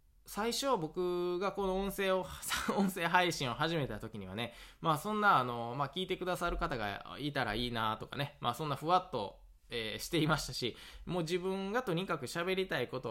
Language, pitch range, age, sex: Japanese, 115-175 Hz, 20-39, male